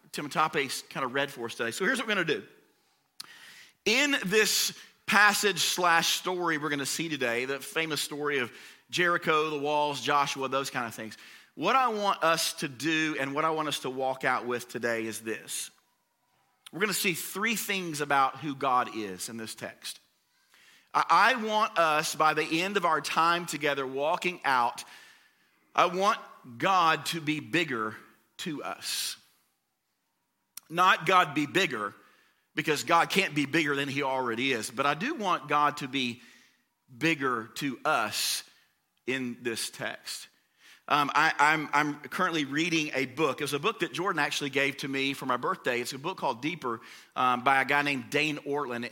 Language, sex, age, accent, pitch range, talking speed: English, male, 40-59, American, 135-170 Hz, 180 wpm